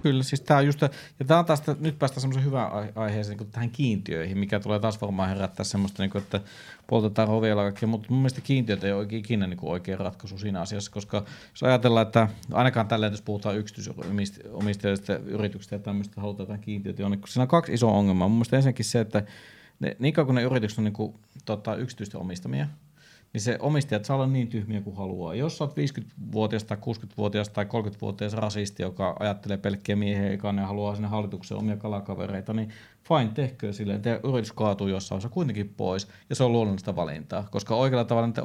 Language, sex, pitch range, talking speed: Finnish, male, 100-125 Hz, 195 wpm